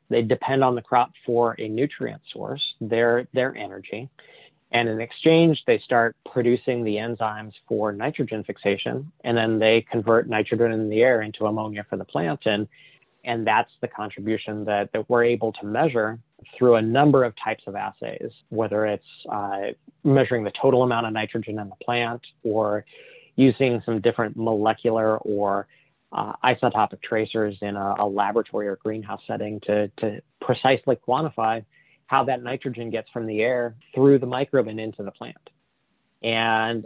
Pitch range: 110-125 Hz